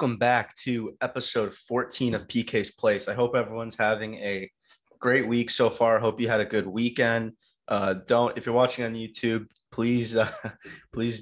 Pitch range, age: 100-115 Hz, 20-39